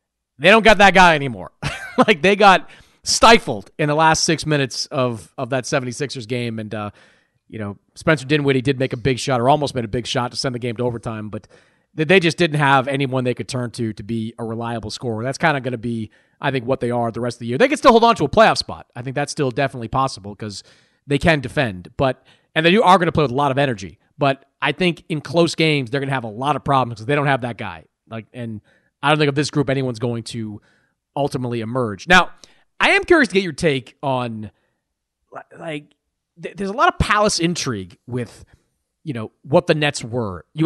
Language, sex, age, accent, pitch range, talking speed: English, male, 30-49, American, 120-160 Hz, 240 wpm